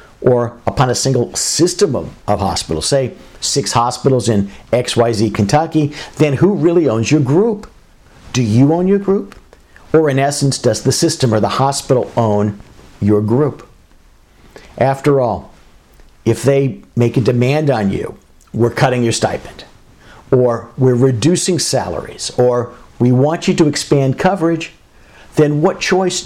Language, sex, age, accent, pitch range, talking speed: English, male, 50-69, American, 115-150 Hz, 145 wpm